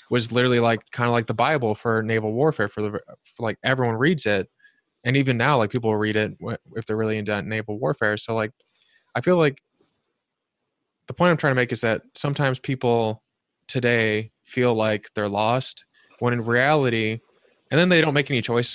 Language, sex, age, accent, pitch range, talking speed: English, male, 20-39, American, 110-135 Hz, 190 wpm